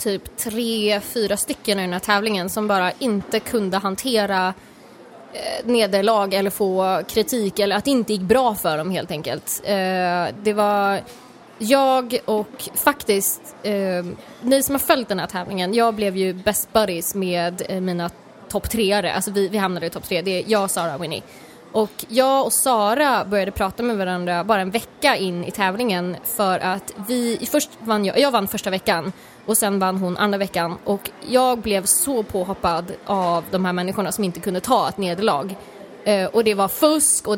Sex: female